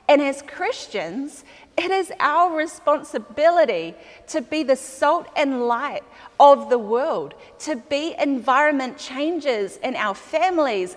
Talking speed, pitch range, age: 125 wpm, 210-295 Hz, 30-49